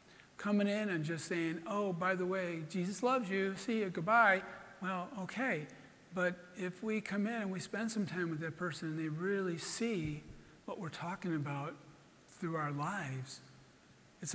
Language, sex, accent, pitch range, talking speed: English, male, American, 155-200 Hz, 175 wpm